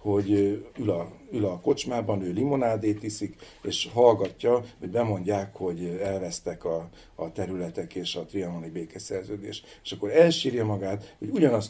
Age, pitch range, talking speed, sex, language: 50-69, 95-110 Hz, 145 wpm, male, Hungarian